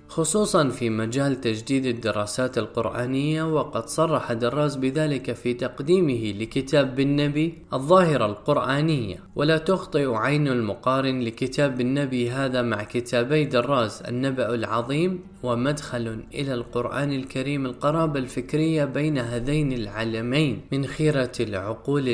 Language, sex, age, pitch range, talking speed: Arabic, male, 20-39, 120-145 Hz, 110 wpm